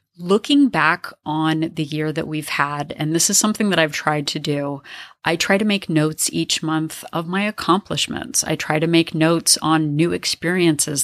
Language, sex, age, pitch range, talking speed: English, female, 30-49, 155-195 Hz, 190 wpm